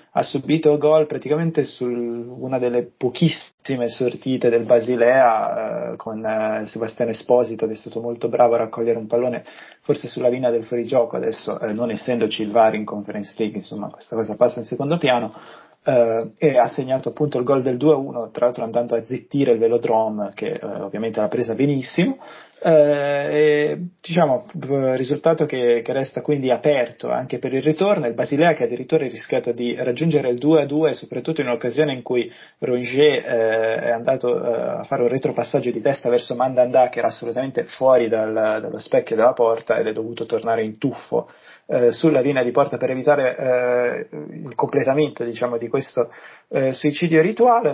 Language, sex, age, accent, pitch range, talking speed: Italian, male, 20-39, native, 120-150 Hz, 175 wpm